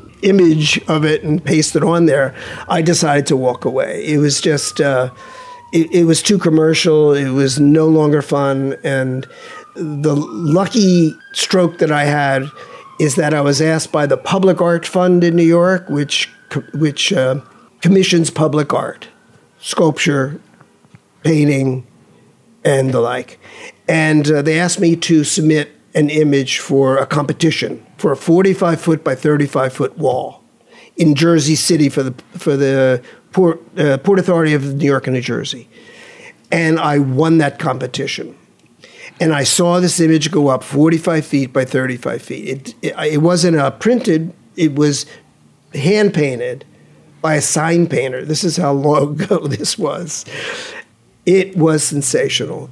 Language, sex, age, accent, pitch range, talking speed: English, male, 50-69, American, 140-170 Hz, 150 wpm